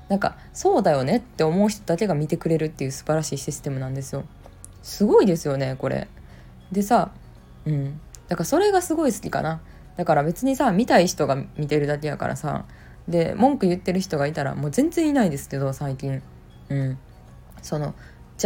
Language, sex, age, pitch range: Japanese, female, 20-39, 140-195 Hz